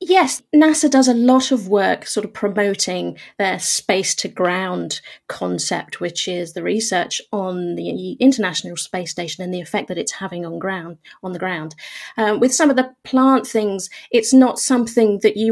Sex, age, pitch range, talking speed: female, 30-49, 185-245 Hz, 180 wpm